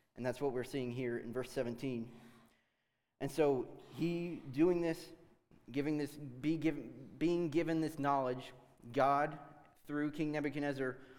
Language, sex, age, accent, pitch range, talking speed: English, male, 20-39, American, 125-145 Hz, 140 wpm